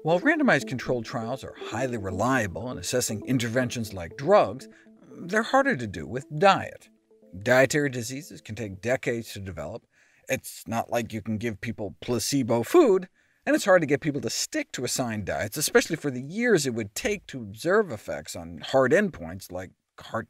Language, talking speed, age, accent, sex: English, 175 wpm, 50-69, American, male